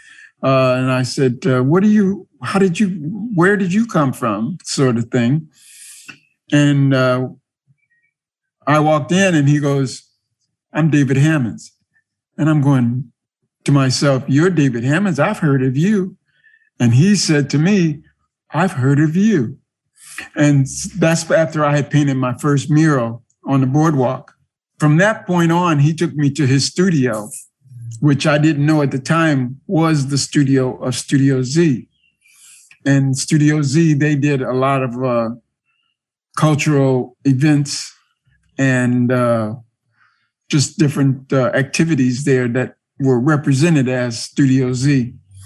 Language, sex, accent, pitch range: English, male, American, 130-160 Hz